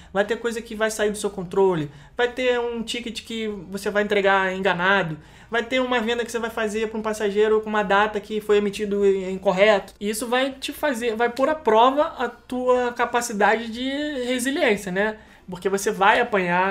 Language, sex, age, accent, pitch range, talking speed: Portuguese, male, 20-39, Brazilian, 195-240 Hz, 200 wpm